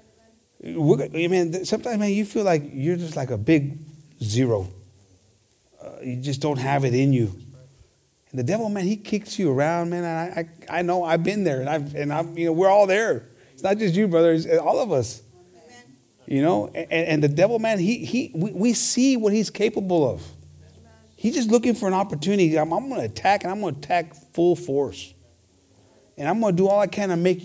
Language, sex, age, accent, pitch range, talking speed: English, male, 30-49, American, 130-200 Hz, 215 wpm